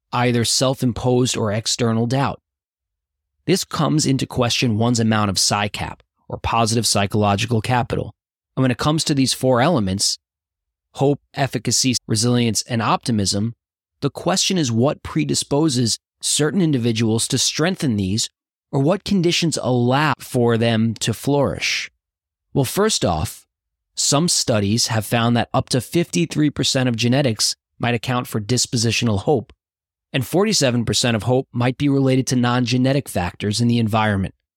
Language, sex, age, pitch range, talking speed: English, male, 20-39, 110-135 Hz, 135 wpm